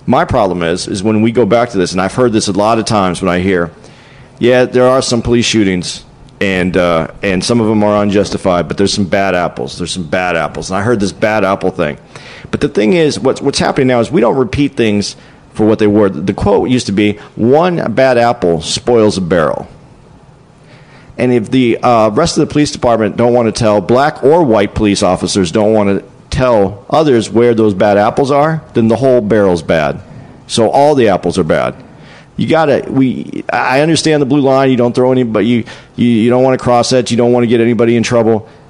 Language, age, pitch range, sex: English, 40-59, 105-135 Hz, male